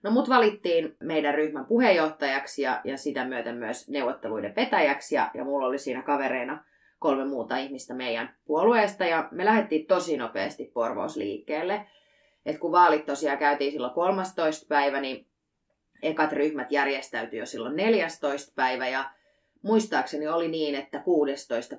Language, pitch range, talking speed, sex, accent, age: Finnish, 140-175 Hz, 145 wpm, female, native, 20-39